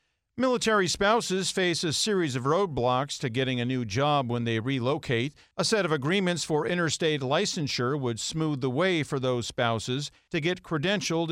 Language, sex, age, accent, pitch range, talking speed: English, male, 50-69, American, 130-165 Hz, 170 wpm